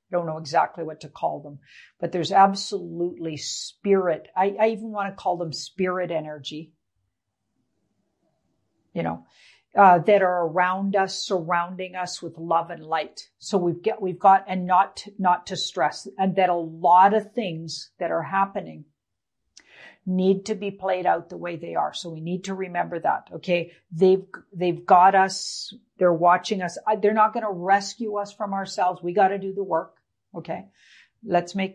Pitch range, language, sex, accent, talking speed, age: 165-195 Hz, English, female, American, 175 wpm, 50-69